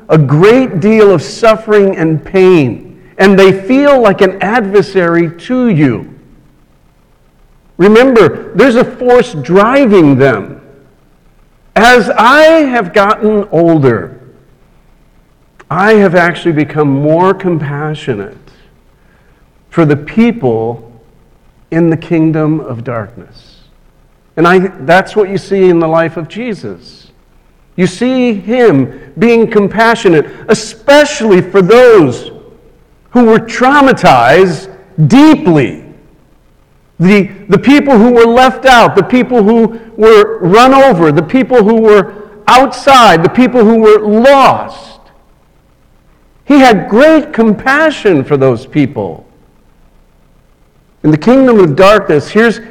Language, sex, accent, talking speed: English, male, American, 115 wpm